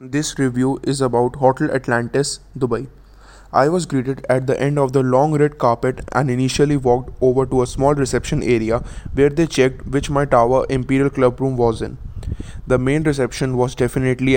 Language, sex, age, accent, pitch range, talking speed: English, male, 20-39, Indian, 125-140 Hz, 180 wpm